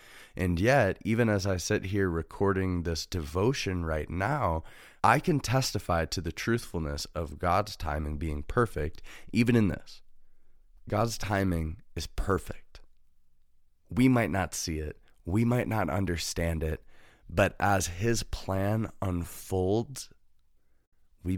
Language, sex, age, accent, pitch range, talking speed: English, male, 30-49, American, 80-100 Hz, 130 wpm